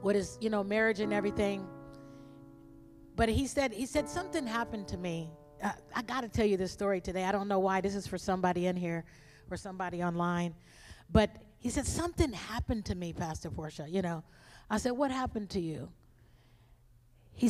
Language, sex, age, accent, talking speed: English, female, 40-59, American, 190 wpm